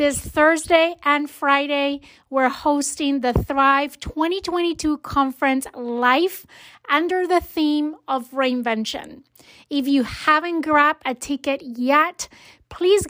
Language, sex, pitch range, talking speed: English, female, 255-310 Hz, 110 wpm